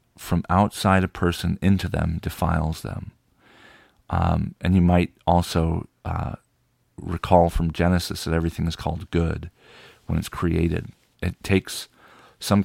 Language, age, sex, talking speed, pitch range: English, 40-59, male, 135 wpm, 85-100 Hz